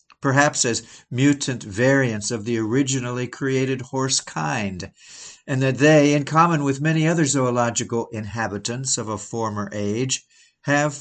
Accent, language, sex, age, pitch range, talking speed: American, English, male, 60-79, 115-145 Hz, 135 wpm